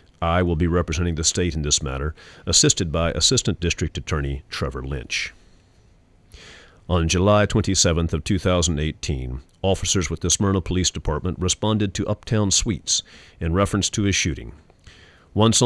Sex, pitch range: male, 80-95 Hz